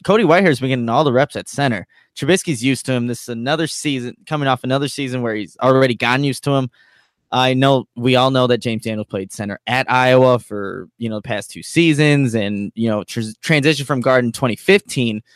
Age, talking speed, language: 10-29, 225 wpm, English